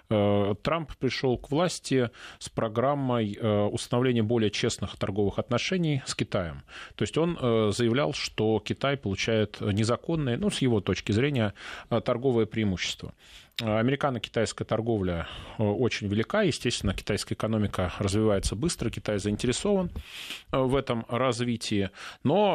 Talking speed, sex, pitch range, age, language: 115 wpm, male, 105-140 Hz, 30-49, Russian